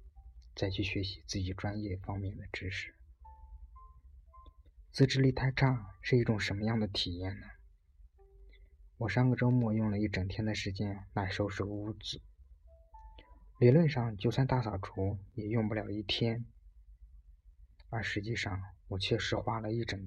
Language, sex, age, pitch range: Chinese, male, 20-39, 70-110 Hz